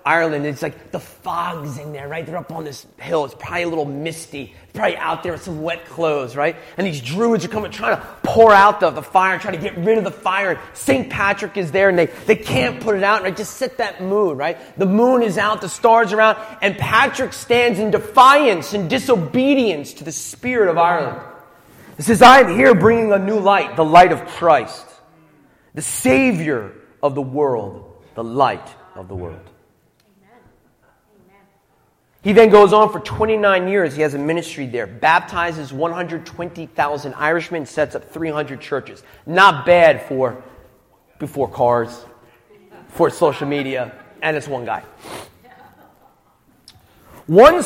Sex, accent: male, American